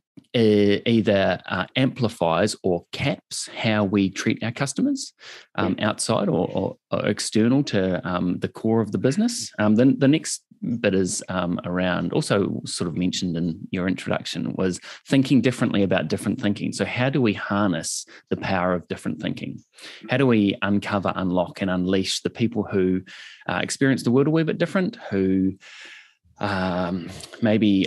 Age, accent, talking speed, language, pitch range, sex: 30-49, Australian, 160 wpm, English, 95-125 Hz, male